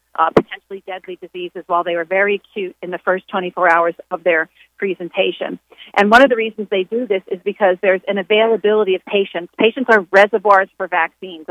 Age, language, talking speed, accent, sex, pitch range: 40-59, English, 195 wpm, American, female, 190-240 Hz